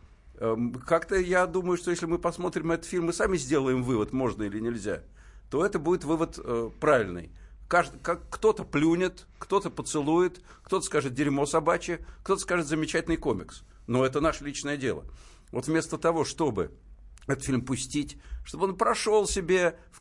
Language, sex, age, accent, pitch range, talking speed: Russian, male, 60-79, native, 130-175 Hz, 150 wpm